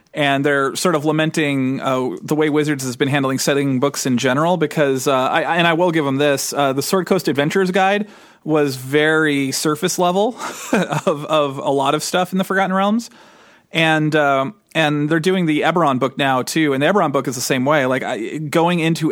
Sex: male